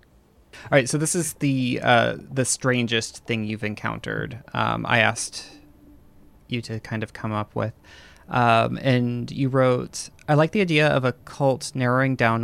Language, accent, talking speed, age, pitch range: English, American, 170 wpm, 20-39, 110-135 Hz